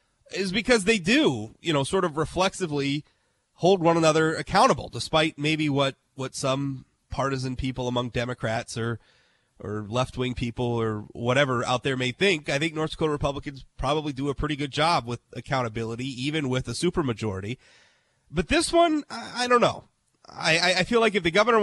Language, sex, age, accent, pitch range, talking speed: English, male, 30-49, American, 135-195 Hz, 170 wpm